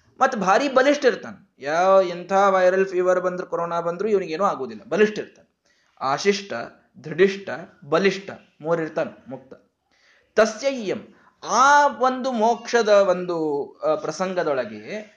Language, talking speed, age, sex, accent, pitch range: Kannada, 95 wpm, 20-39, male, native, 165-250 Hz